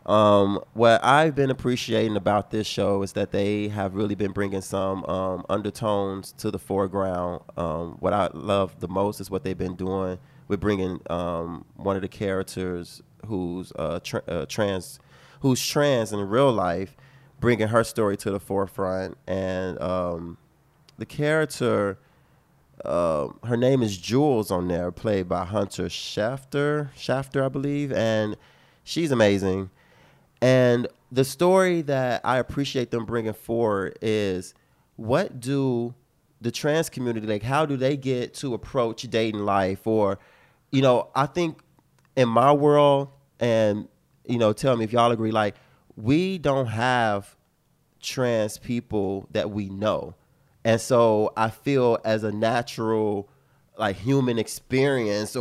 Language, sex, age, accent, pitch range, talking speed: English, male, 30-49, American, 100-130 Hz, 145 wpm